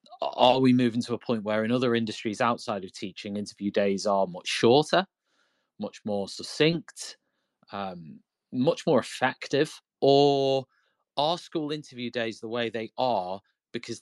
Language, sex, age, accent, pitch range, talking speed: English, male, 30-49, British, 105-130 Hz, 150 wpm